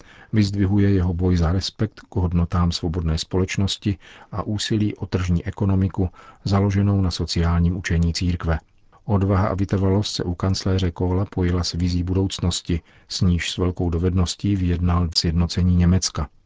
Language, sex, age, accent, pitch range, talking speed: Czech, male, 40-59, native, 85-100 Hz, 135 wpm